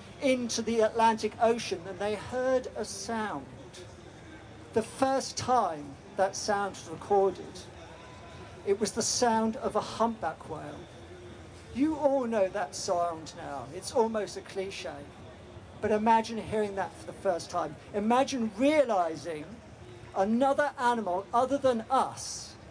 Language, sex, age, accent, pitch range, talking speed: English, male, 50-69, British, 155-225 Hz, 130 wpm